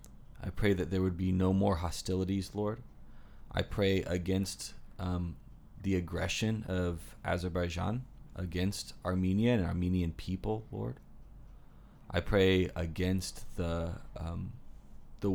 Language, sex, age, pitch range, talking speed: English, male, 20-39, 85-100 Hz, 115 wpm